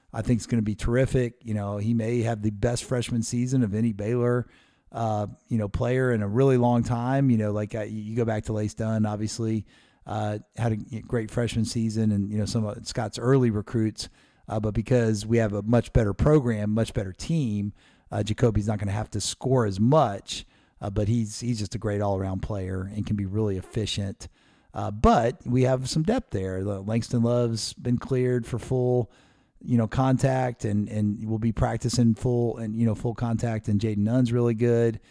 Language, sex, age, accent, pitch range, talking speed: English, male, 50-69, American, 105-120 Hz, 205 wpm